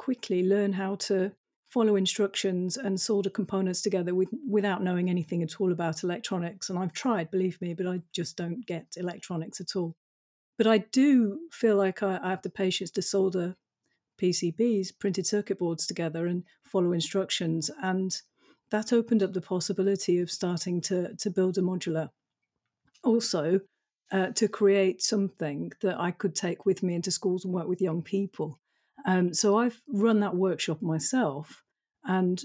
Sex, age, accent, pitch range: female, 50-69, British, 180-210 Hz